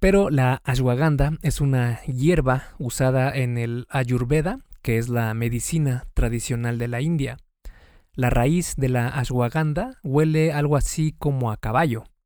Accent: Mexican